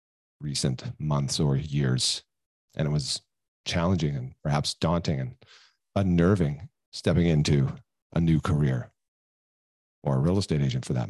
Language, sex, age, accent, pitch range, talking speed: English, male, 40-59, American, 70-95 Hz, 135 wpm